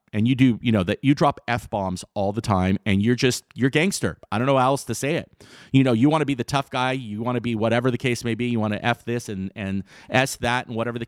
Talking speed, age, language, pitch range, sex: 300 wpm, 40-59, English, 110-145 Hz, male